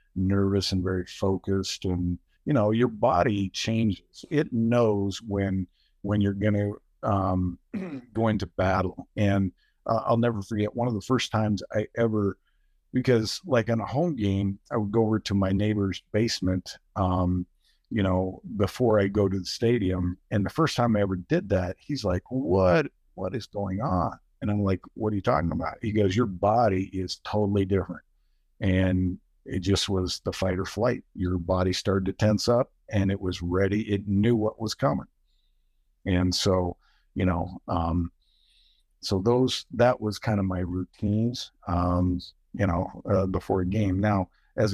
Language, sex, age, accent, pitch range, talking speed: English, male, 50-69, American, 90-110 Hz, 175 wpm